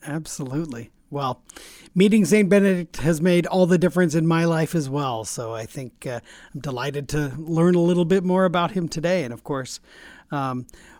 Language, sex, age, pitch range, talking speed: English, male, 40-59, 145-185 Hz, 185 wpm